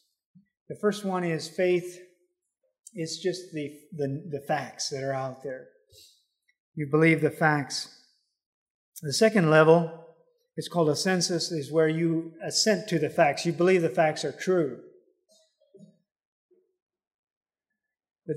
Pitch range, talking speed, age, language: 150-190 Hz, 130 wpm, 50-69, English